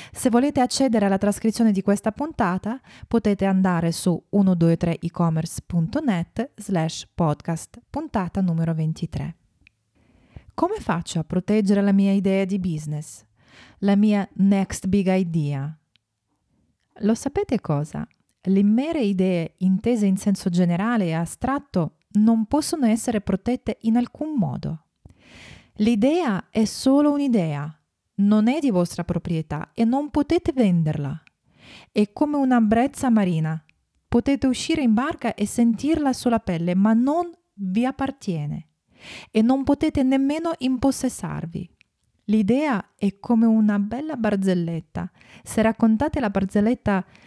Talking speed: 120 wpm